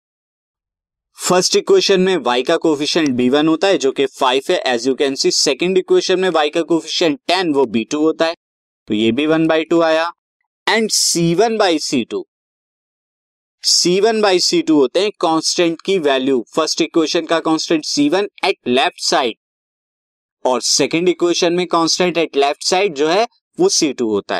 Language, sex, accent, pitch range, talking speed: Hindi, male, native, 150-220 Hz, 165 wpm